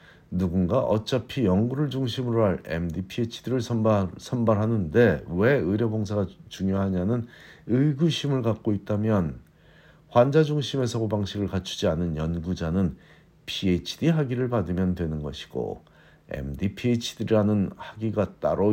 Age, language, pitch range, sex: 50-69, Korean, 90-120 Hz, male